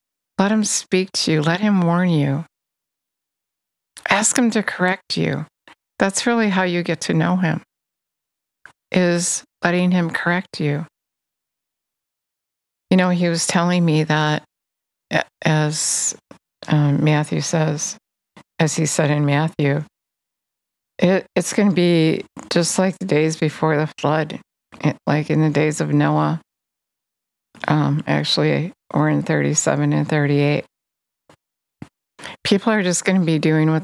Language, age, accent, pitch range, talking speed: English, 50-69, American, 150-175 Hz, 135 wpm